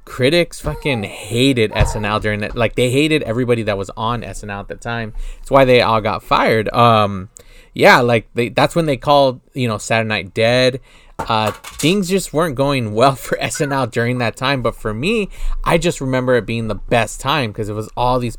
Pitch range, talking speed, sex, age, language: 110-135 Hz, 205 wpm, male, 20-39, English